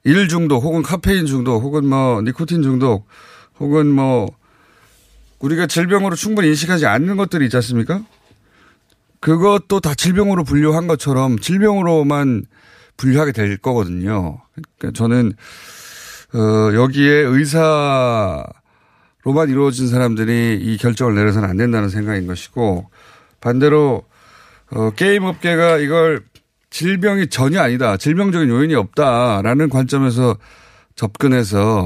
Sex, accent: male, native